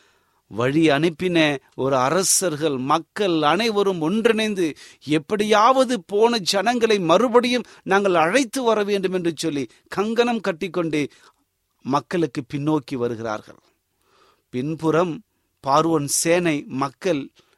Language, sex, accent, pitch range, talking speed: Tamil, male, native, 150-215 Hz, 90 wpm